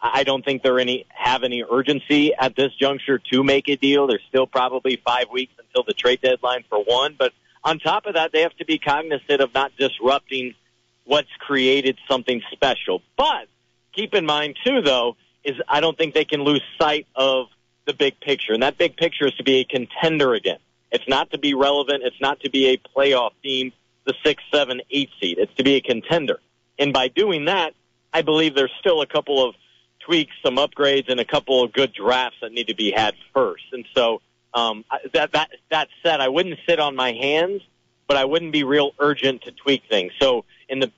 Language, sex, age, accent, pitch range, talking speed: English, male, 40-59, American, 130-155 Hz, 210 wpm